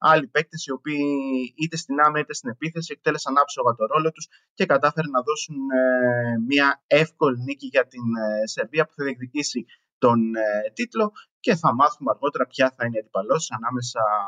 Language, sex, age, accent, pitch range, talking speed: Greek, male, 20-39, native, 125-155 Hz, 170 wpm